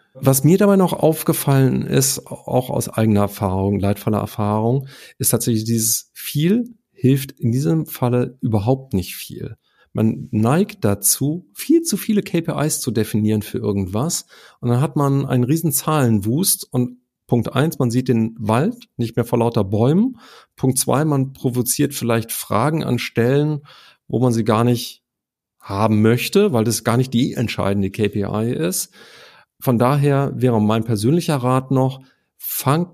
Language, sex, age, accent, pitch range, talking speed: German, male, 50-69, German, 110-140 Hz, 155 wpm